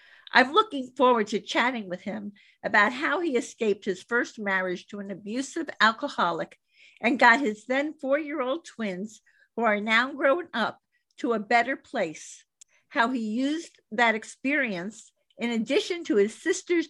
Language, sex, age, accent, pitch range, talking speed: English, female, 50-69, American, 215-285 Hz, 155 wpm